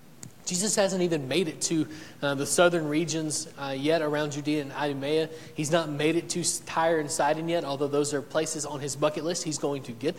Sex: male